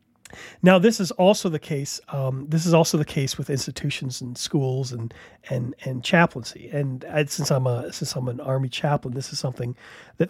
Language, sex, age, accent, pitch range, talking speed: English, male, 40-59, American, 135-175 Hz, 200 wpm